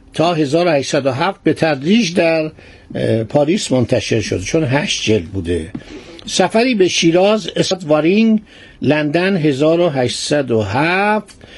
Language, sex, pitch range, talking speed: Persian, male, 130-175 Hz, 100 wpm